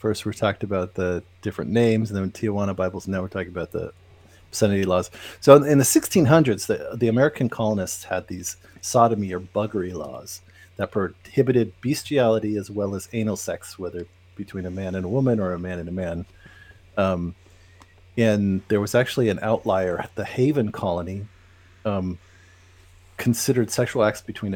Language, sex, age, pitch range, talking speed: English, male, 40-59, 90-115 Hz, 165 wpm